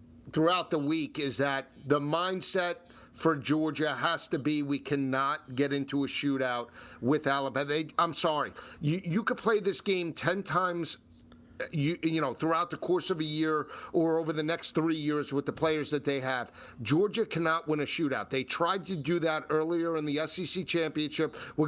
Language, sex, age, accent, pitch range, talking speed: English, male, 50-69, American, 155-210 Hz, 190 wpm